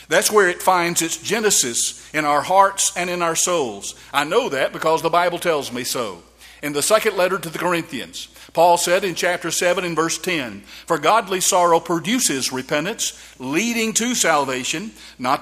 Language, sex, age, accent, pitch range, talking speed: English, male, 50-69, American, 155-190 Hz, 180 wpm